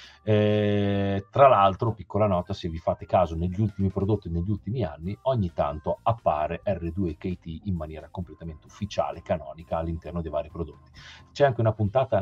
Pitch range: 85-110 Hz